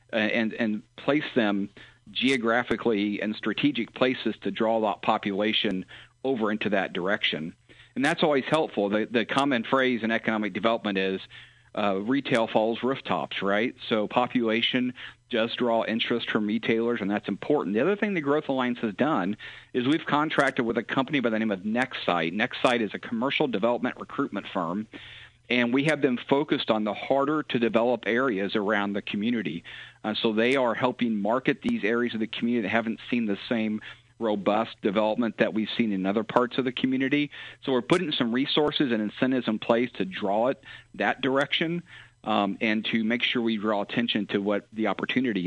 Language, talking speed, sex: English, 180 wpm, male